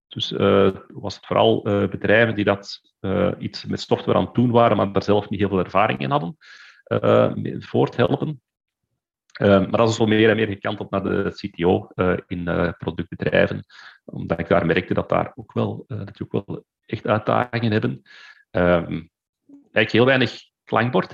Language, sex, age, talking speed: Dutch, male, 40-59, 185 wpm